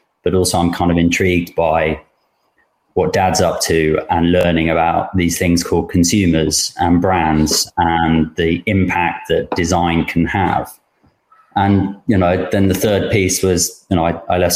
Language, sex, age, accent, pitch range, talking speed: English, male, 20-39, British, 85-95 Hz, 165 wpm